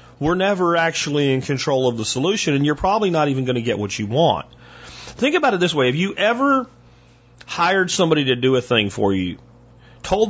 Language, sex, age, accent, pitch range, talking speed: English, male, 40-59, American, 130-185 Hz, 210 wpm